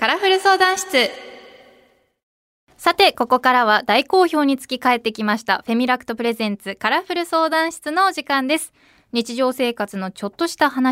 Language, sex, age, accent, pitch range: Japanese, female, 20-39, native, 205-265 Hz